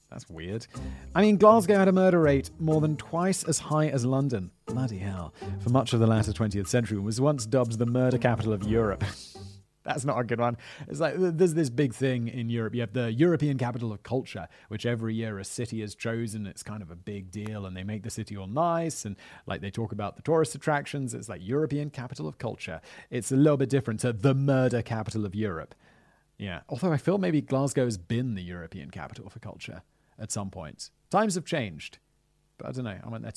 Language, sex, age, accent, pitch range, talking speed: English, male, 30-49, British, 110-155 Hz, 220 wpm